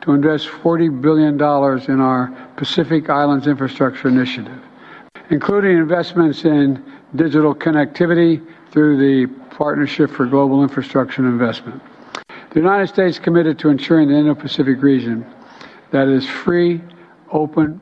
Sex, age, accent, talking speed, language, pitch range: male, 60-79, American, 120 wpm, Filipino, 130-155 Hz